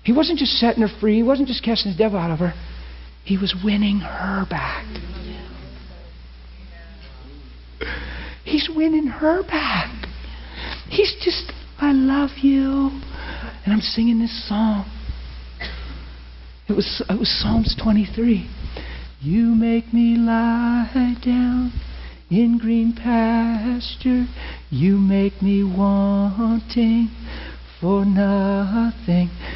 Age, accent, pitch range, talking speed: 40-59, American, 155-225 Hz, 110 wpm